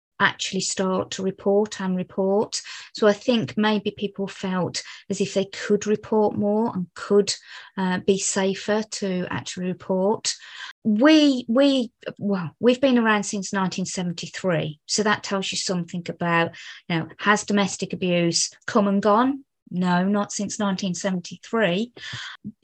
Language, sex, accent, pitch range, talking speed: English, female, British, 180-215 Hz, 135 wpm